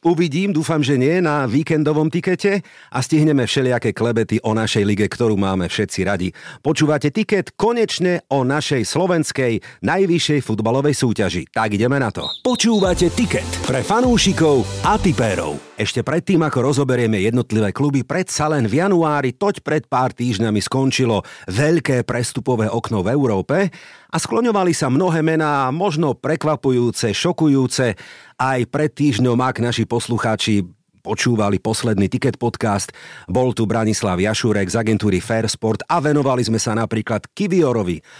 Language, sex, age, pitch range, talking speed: Slovak, male, 50-69, 110-155 Hz, 140 wpm